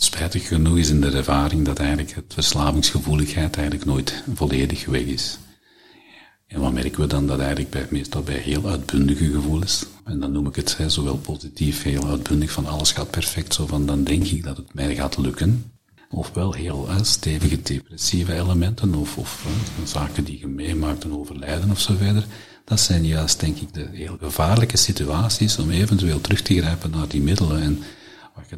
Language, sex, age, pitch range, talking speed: Dutch, male, 50-69, 75-95 Hz, 185 wpm